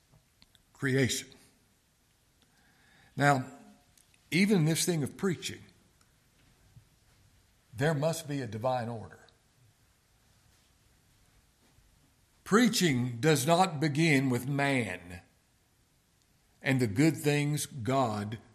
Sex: male